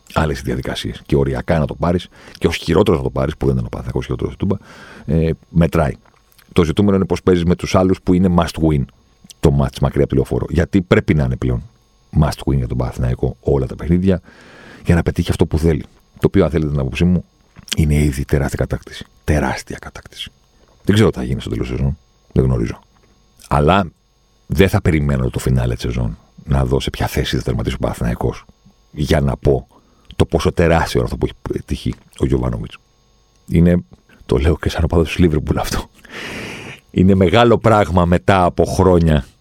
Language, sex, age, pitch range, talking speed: Greek, male, 50-69, 70-90 Hz, 190 wpm